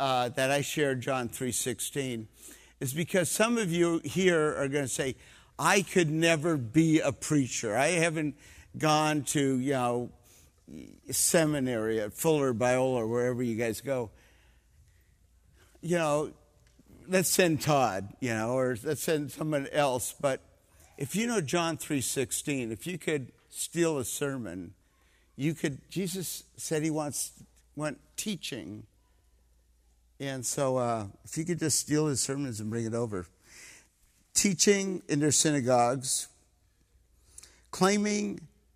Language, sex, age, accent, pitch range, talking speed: English, male, 50-69, American, 115-160 Hz, 140 wpm